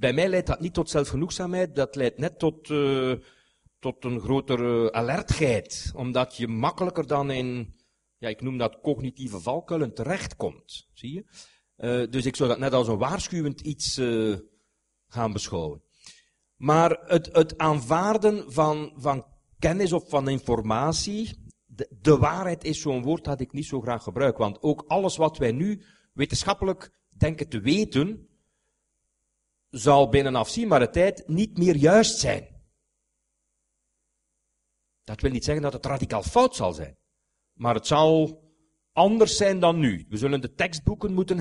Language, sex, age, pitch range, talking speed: Dutch, male, 50-69, 120-170 Hz, 155 wpm